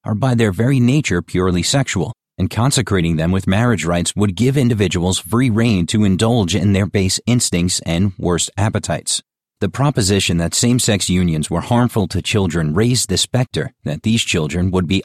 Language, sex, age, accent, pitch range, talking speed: English, male, 40-59, American, 90-115 Hz, 175 wpm